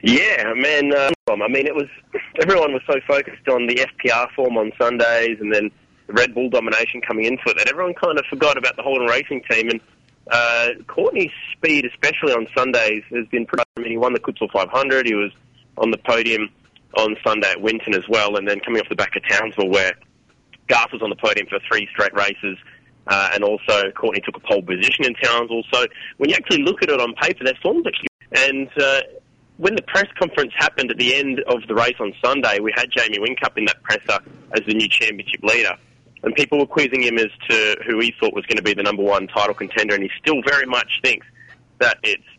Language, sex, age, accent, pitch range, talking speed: English, male, 30-49, Australian, 110-145 Hz, 220 wpm